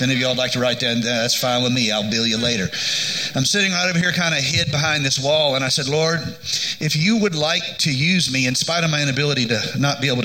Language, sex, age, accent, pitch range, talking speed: English, male, 40-59, American, 130-160 Hz, 275 wpm